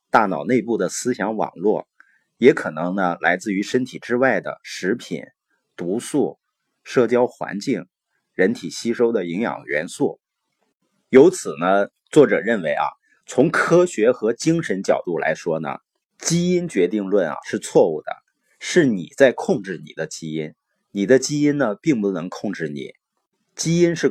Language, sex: Chinese, male